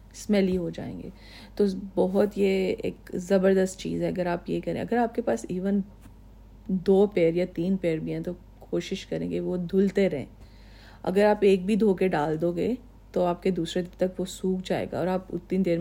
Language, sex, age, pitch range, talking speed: Urdu, female, 40-59, 165-190 Hz, 215 wpm